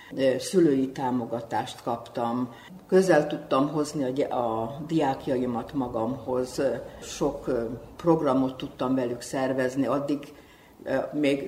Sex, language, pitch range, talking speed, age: female, Hungarian, 125-150 Hz, 85 wpm, 60-79